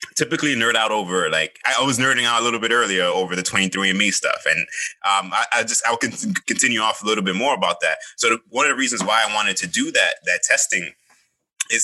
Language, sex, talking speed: English, male, 250 wpm